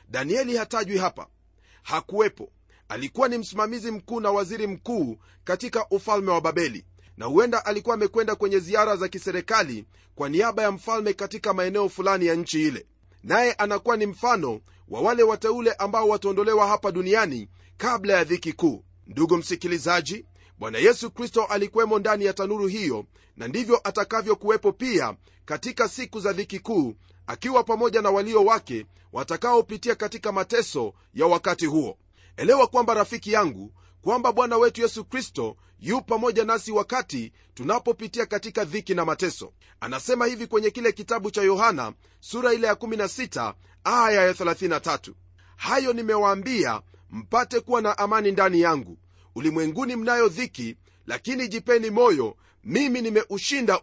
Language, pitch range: Swahili, 165-230 Hz